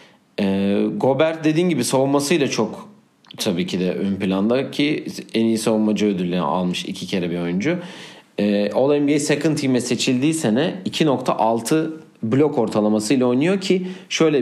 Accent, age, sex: native, 40-59, male